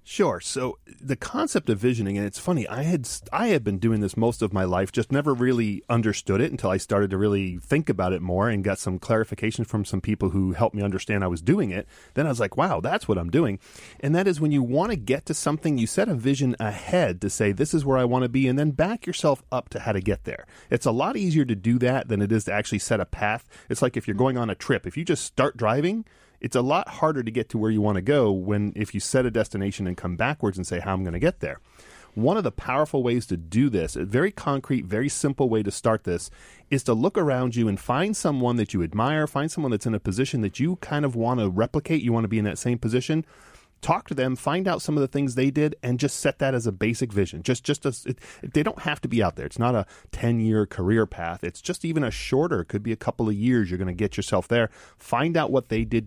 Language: English